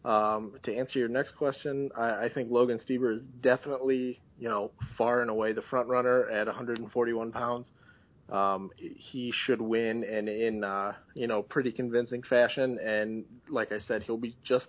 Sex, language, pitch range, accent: male, English, 115-130 Hz, American